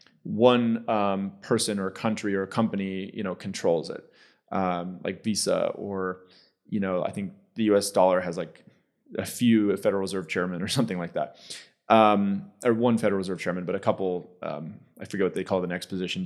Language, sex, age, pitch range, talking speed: English, male, 30-49, 95-130 Hz, 200 wpm